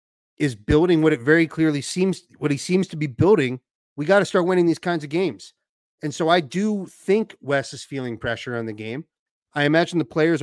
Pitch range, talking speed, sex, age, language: 120-160 Hz, 220 wpm, male, 30-49, English